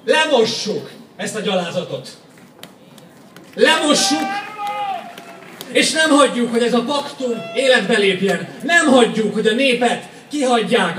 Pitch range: 220-275 Hz